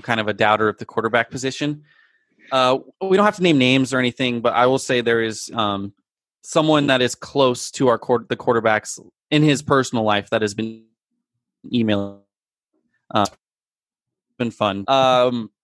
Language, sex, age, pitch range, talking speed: English, male, 20-39, 110-140 Hz, 175 wpm